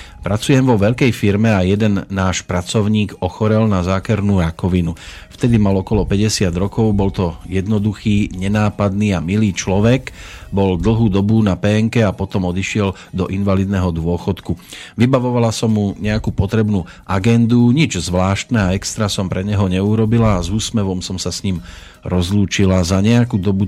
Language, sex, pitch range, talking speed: Slovak, male, 90-110 Hz, 150 wpm